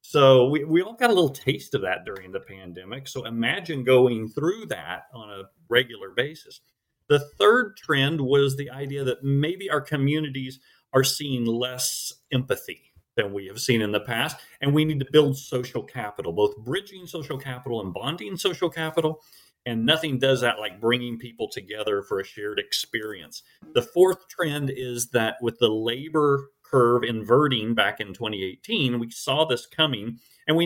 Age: 40-59